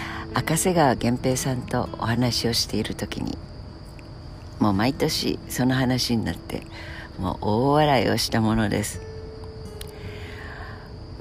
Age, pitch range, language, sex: 60-79, 90-125 Hz, Japanese, female